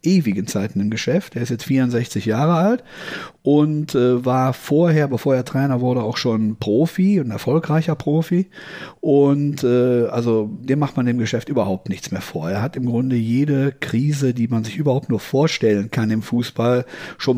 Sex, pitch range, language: male, 120-150 Hz, German